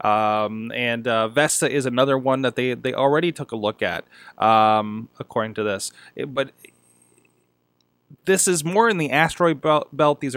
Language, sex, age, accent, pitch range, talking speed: English, male, 20-39, American, 110-135 Hz, 160 wpm